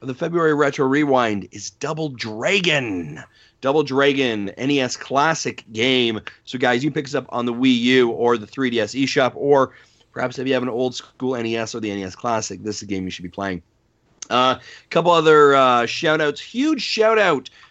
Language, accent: English, American